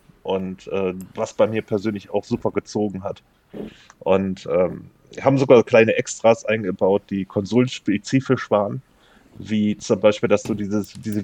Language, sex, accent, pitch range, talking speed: German, male, German, 100-120 Hz, 140 wpm